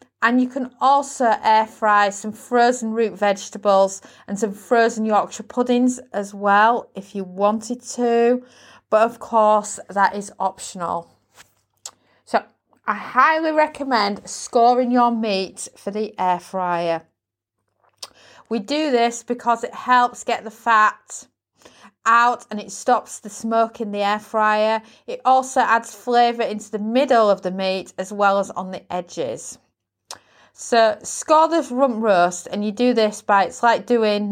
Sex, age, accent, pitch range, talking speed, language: female, 30-49, British, 190-240 Hz, 150 wpm, English